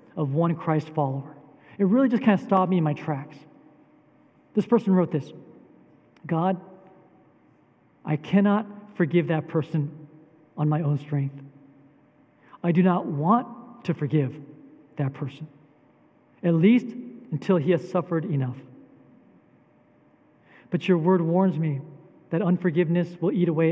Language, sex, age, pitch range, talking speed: English, male, 40-59, 145-175 Hz, 135 wpm